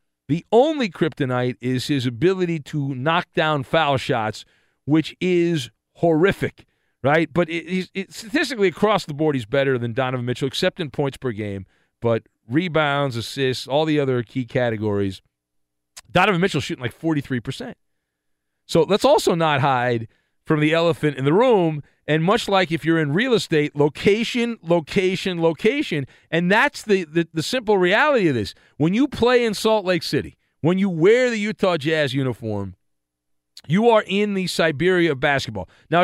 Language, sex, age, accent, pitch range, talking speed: English, male, 40-59, American, 125-185 Hz, 160 wpm